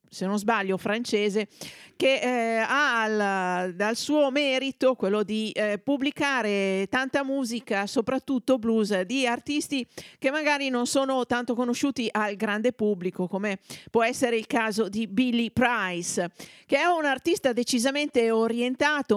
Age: 50-69